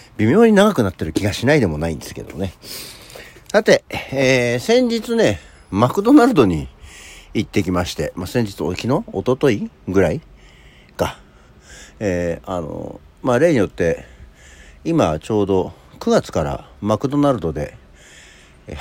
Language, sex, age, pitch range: Japanese, male, 60-79, 75-120 Hz